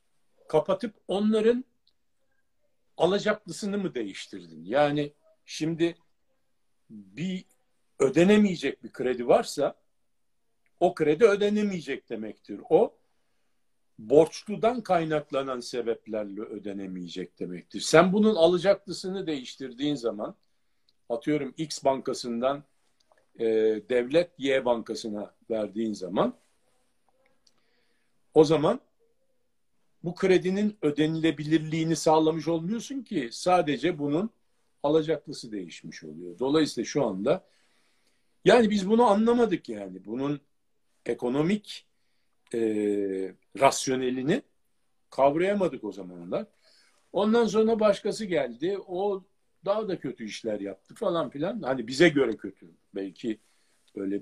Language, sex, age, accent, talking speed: Turkish, male, 50-69, native, 90 wpm